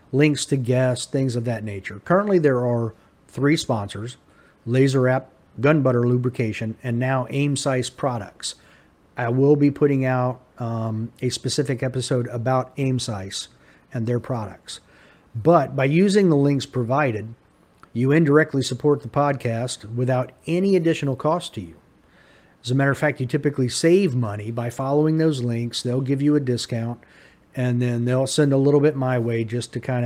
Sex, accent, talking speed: male, American, 165 wpm